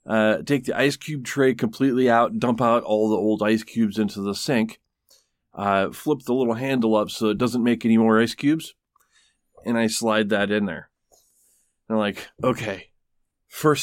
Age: 20-39